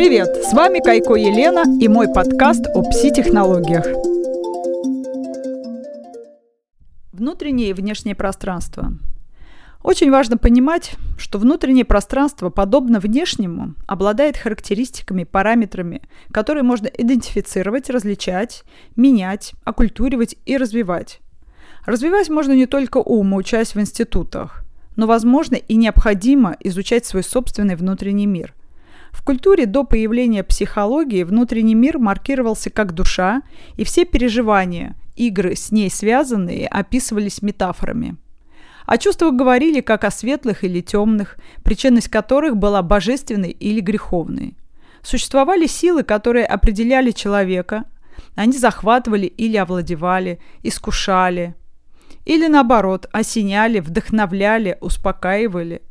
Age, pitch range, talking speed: 20-39, 195-255 Hz, 105 wpm